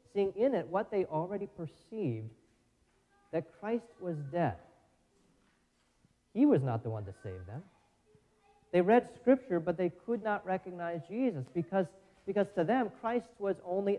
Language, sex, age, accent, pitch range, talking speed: English, male, 30-49, American, 140-195 Hz, 145 wpm